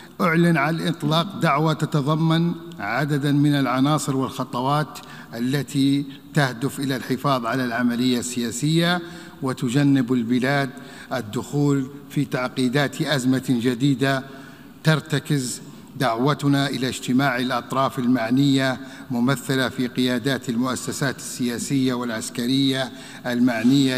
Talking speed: 90 wpm